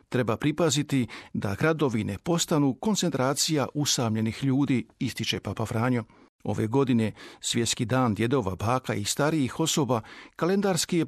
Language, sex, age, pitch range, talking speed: Croatian, male, 50-69, 115-150 Hz, 125 wpm